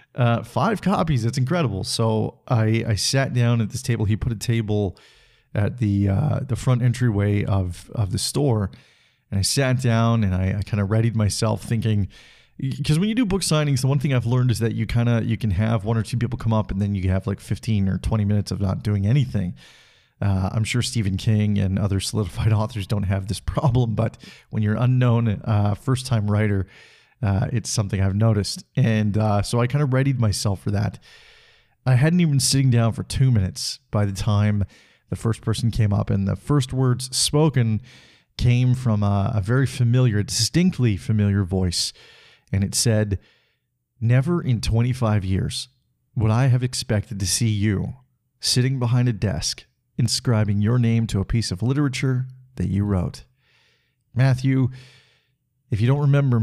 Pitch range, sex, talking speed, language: 105-125 Hz, male, 190 wpm, English